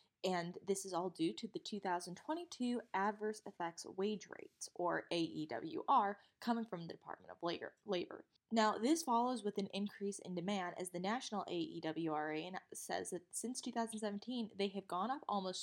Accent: American